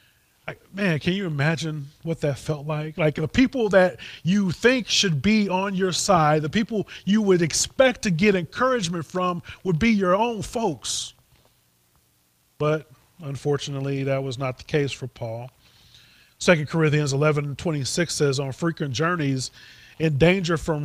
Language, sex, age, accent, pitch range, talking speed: English, male, 30-49, American, 140-180 Hz, 160 wpm